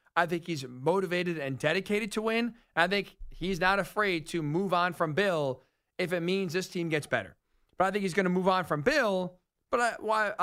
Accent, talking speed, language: American, 215 wpm, English